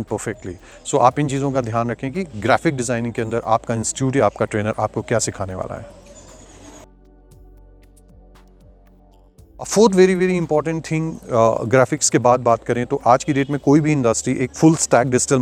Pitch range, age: 115-155 Hz, 30-49